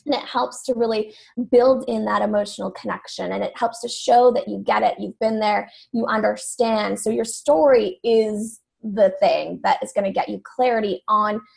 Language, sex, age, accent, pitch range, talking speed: English, female, 10-29, American, 210-250 Hz, 195 wpm